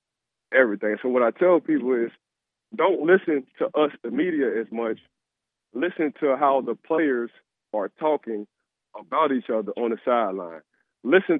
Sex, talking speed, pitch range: male, 155 wpm, 125-175 Hz